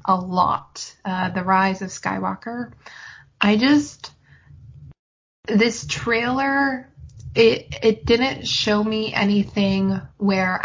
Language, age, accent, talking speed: English, 20-39, American, 100 wpm